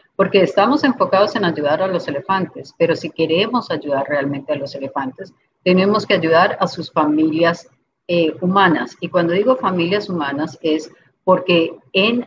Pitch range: 155-195 Hz